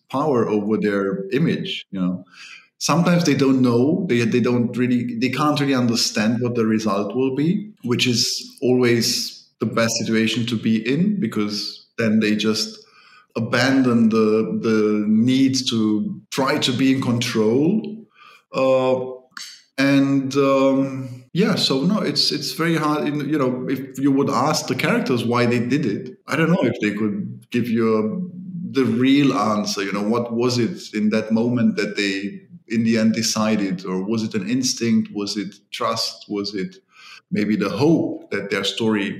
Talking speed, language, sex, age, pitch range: 170 wpm, English, male, 50-69, 110-135 Hz